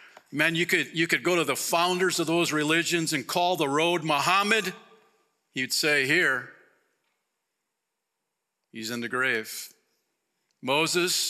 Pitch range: 120-165 Hz